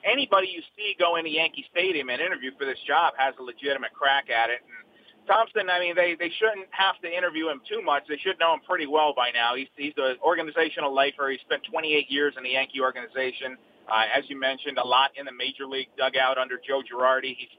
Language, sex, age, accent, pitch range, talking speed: English, male, 40-59, American, 135-175 Hz, 230 wpm